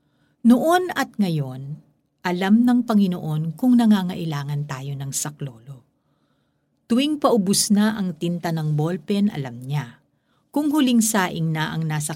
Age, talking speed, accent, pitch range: 50-69, 130 wpm, native, 155-225 Hz